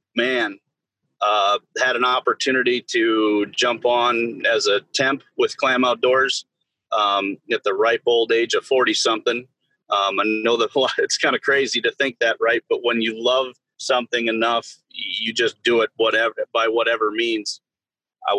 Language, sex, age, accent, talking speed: English, male, 30-49, American, 165 wpm